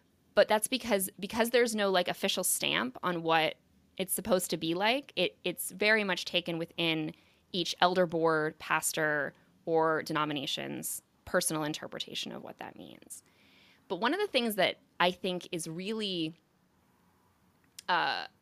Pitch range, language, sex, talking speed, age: 170-215 Hz, English, female, 145 wpm, 20-39